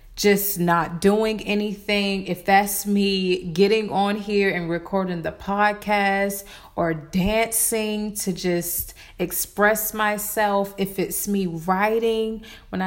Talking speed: 115 wpm